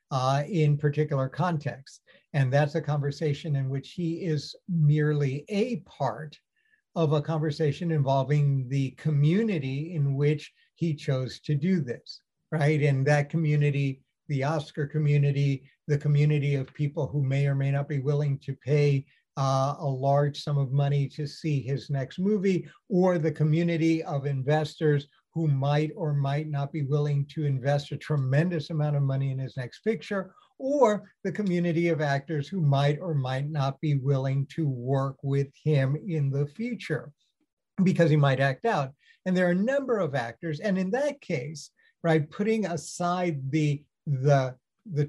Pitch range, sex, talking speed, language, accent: 140-165 Hz, male, 160 wpm, English, American